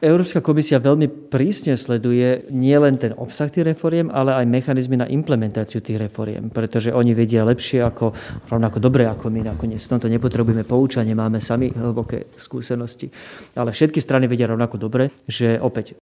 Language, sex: Slovak, male